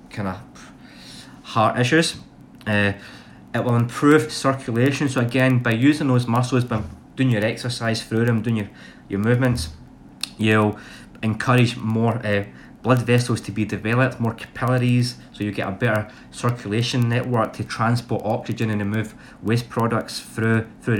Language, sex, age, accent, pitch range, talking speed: English, male, 20-39, British, 110-125 Hz, 150 wpm